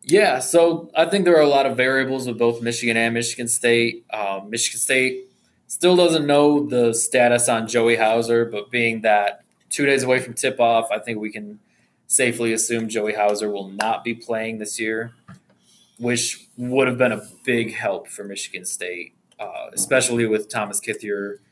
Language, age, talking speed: English, 20-39, 180 wpm